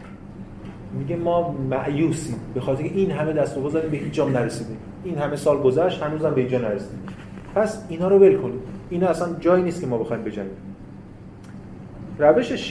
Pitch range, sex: 125-170 Hz, male